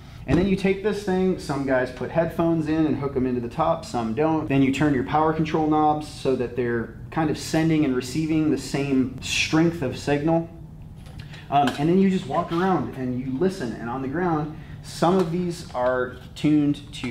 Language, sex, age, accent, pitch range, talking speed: English, male, 30-49, American, 115-150 Hz, 205 wpm